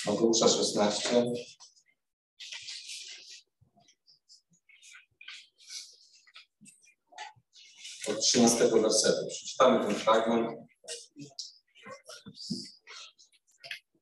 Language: Polish